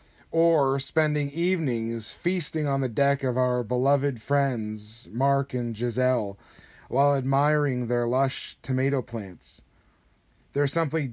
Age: 30-49